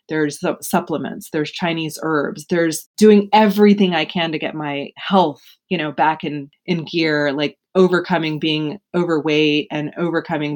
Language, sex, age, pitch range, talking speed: English, female, 20-39, 145-180 Hz, 150 wpm